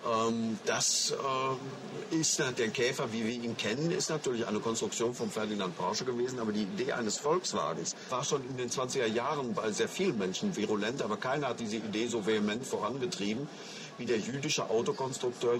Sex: male